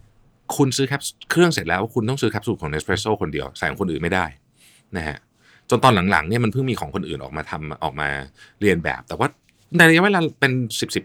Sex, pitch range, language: male, 95-130 Hz, Thai